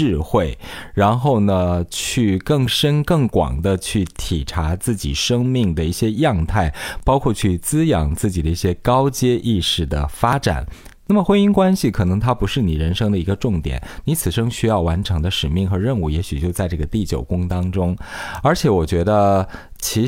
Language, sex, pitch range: Chinese, male, 85-120 Hz